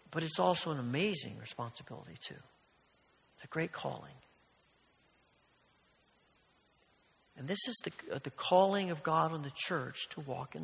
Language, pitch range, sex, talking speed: English, 135-180 Hz, male, 140 wpm